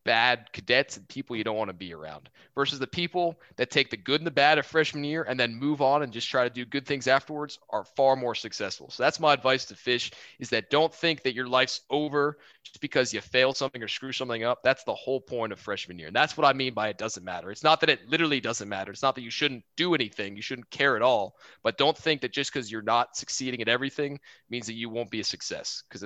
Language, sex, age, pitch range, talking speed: English, male, 20-39, 110-140 Hz, 265 wpm